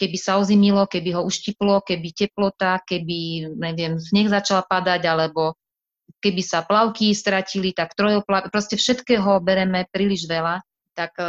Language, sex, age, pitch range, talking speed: Slovak, female, 30-49, 160-185 Hz, 140 wpm